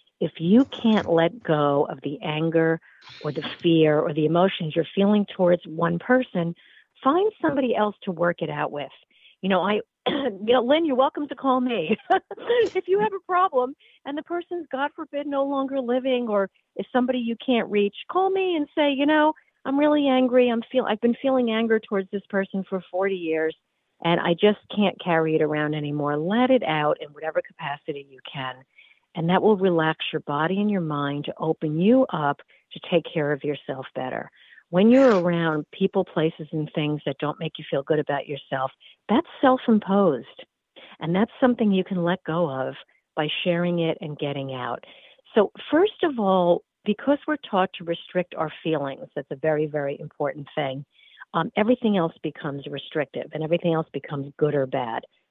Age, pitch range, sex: 50-69, 155-250 Hz, female